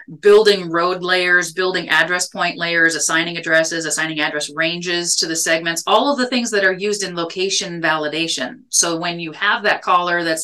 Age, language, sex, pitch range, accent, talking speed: 30-49, English, female, 160-185 Hz, American, 185 wpm